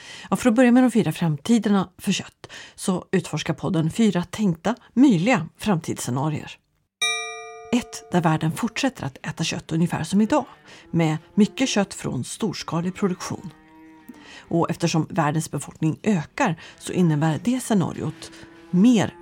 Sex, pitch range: female, 155-215 Hz